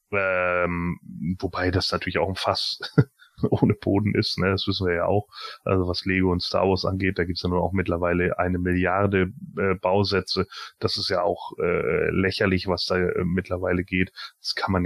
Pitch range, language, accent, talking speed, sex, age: 95-115 Hz, German, German, 195 wpm, male, 30-49